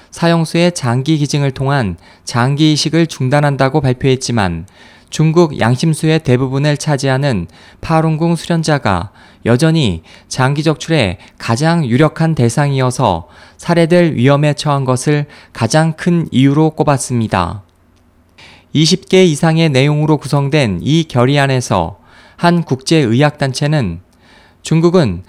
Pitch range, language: 115-155 Hz, Korean